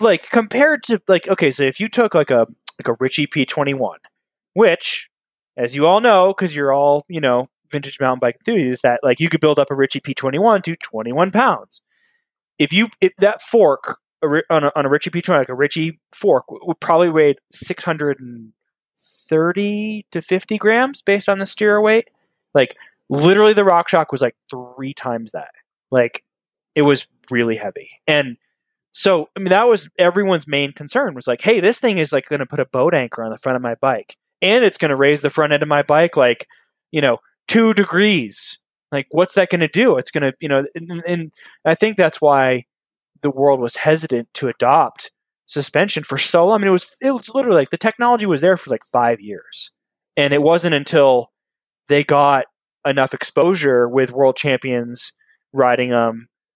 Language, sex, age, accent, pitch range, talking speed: English, male, 20-39, American, 135-195 Hz, 195 wpm